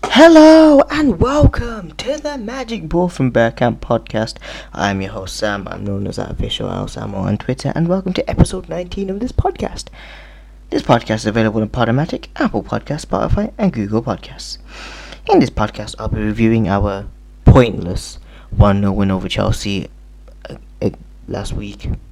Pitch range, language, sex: 95-110 Hz, English, male